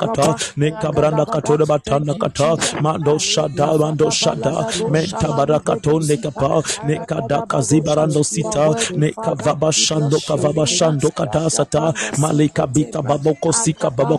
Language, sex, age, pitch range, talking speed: English, male, 30-49, 150-160 Hz, 120 wpm